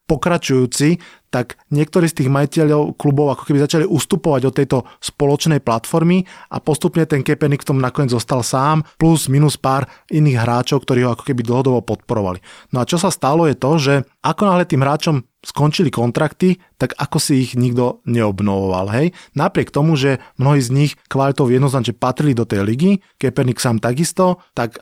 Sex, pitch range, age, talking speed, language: male, 115-145 Hz, 30-49, 175 wpm, Slovak